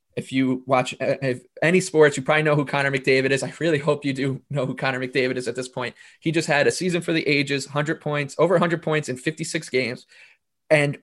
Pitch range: 135-160 Hz